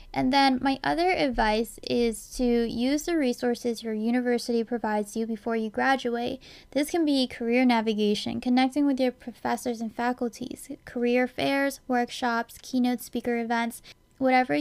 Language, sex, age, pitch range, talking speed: English, female, 10-29, 225-260 Hz, 145 wpm